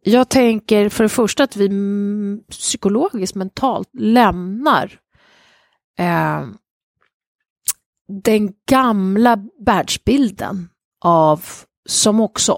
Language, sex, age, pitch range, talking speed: Swedish, female, 30-49, 170-220 Hz, 75 wpm